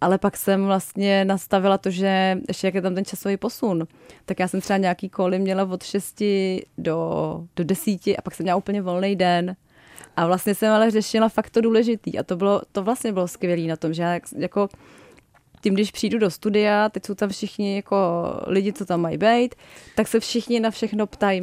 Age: 20-39